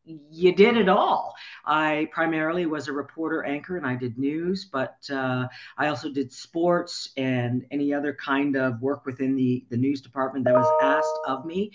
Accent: American